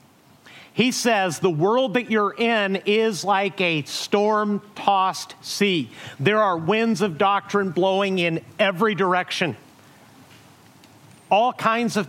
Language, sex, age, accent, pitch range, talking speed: English, male, 50-69, American, 170-210 Hz, 120 wpm